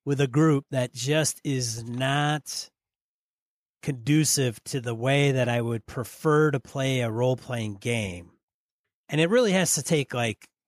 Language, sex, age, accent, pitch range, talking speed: English, male, 30-49, American, 115-145 Hz, 150 wpm